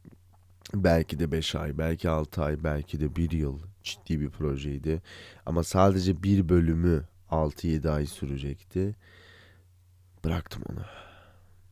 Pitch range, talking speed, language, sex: 80-95 Hz, 120 wpm, Turkish, male